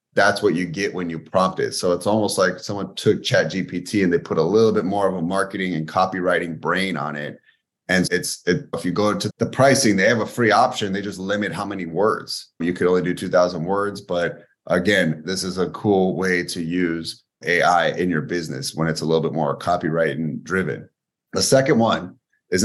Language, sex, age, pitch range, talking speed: English, male, 30-49, 90-110 Hz, 215 wpm